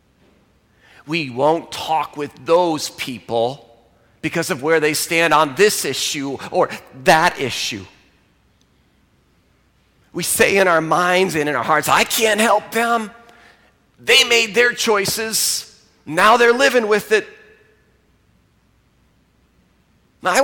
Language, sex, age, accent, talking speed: English, male, 40-59, American, 115 wpm